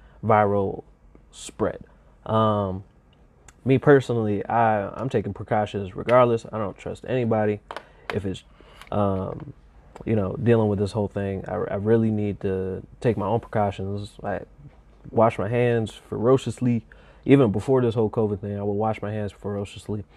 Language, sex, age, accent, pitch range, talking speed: English, male, 20-39, American, 100-115 Hz, 150 wpm